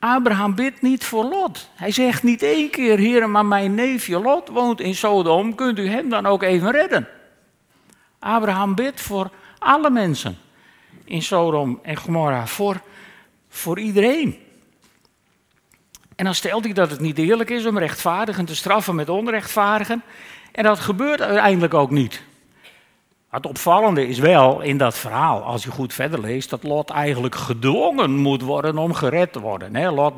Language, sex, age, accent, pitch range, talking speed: Dutch, male, 60-79, Dutch, 155-215 Hz, 160 wpm